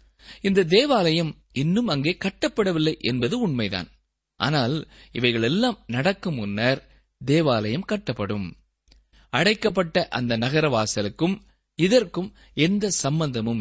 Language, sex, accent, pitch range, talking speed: Tamil, male, native, 120-195 Hz, 80 wpm